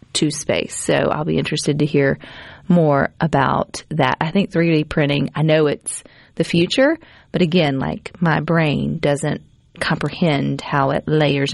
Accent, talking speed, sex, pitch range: American, 155 wpm, female, 150-195 Hz